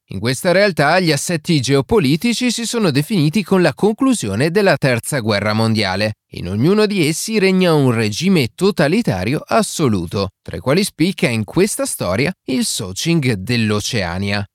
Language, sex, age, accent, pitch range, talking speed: Italian, male, 30-49, native, 110-180 Hz, 145 wpm